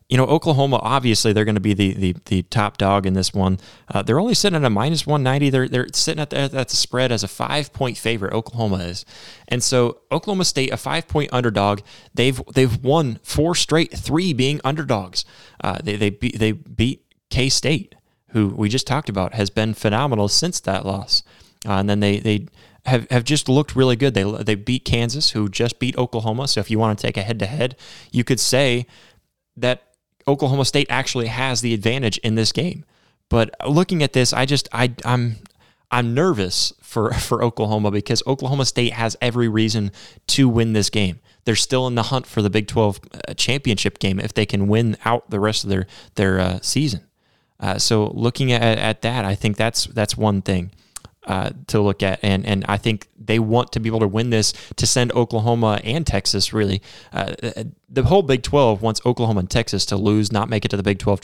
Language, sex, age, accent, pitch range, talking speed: English, male, 20-39, American, 105-130 Hz, 210 wpm